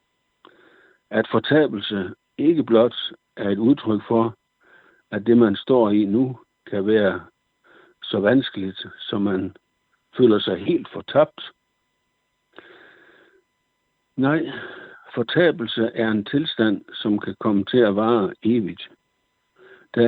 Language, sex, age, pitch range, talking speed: Danish, male, 60-79, 100-120 Hz, 110 wpm